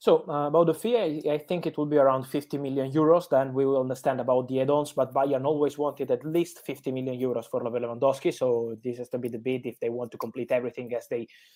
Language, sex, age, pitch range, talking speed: English, male, 20-39, 130-155 Hz, 250 wpm